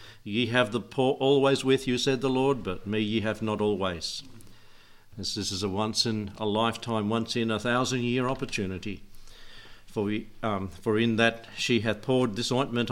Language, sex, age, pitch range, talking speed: English, male, 60-79, 105-130 Hz, 175 wpm